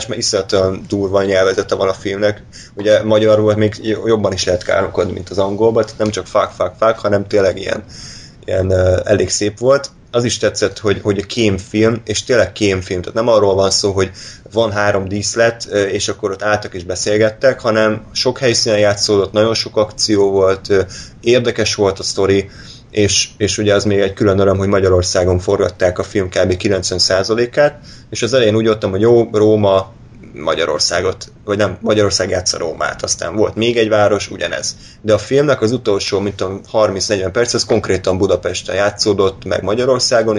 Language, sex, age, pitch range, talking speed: Hungarian, male, 20-39, 95-110 Hz, 170 wpm